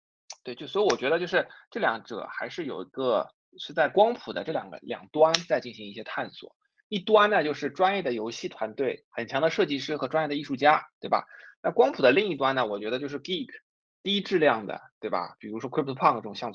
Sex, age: male, 20-39